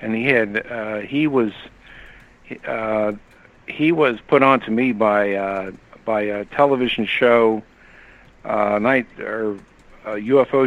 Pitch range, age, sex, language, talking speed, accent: 105-130 Hz, 60-79, male, English, 135 wpm, American